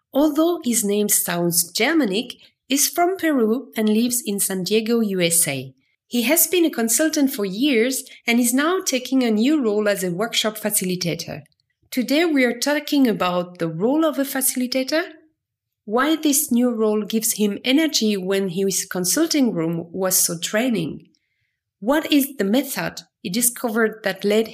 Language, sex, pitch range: English, female, 205-275 Hz